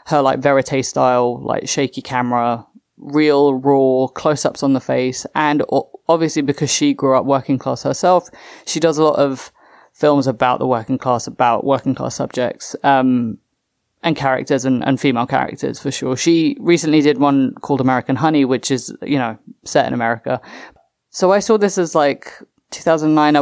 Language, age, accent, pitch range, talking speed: English, 20-39, British, 130-150 Hz, 170 wpm